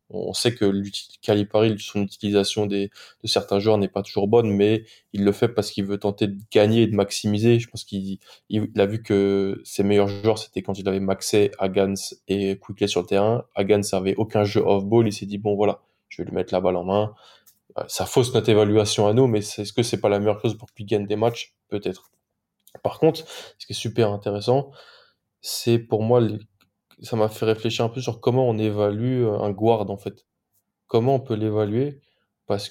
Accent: French